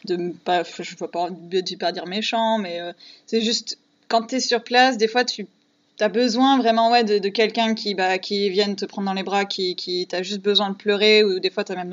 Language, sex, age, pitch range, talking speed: French, female, 20-39, 185-225 Hz, 245 wpm